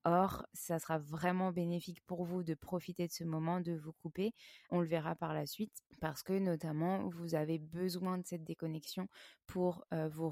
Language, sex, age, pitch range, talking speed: French, female, 20-39, 160-180 Hz, 190 wpm